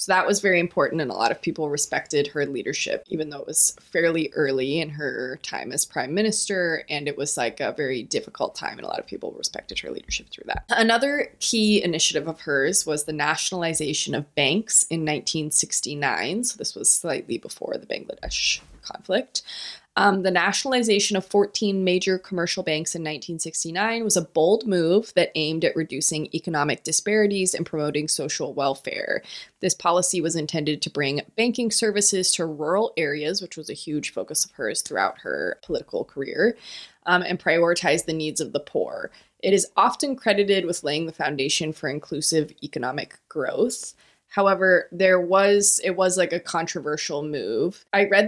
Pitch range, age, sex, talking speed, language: 155-200 Hz, 20-39, female, 175 wpm, English